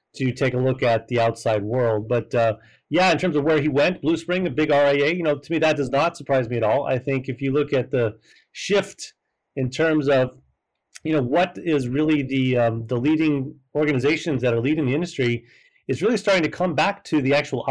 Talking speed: 230 wpm